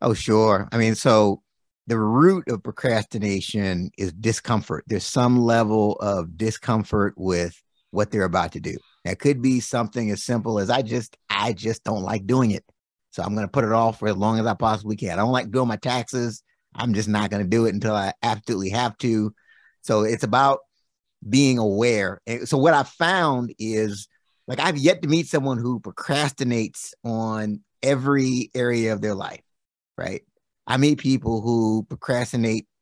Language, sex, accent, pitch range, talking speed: English, male, American, 110-130 Hz, 180 wpm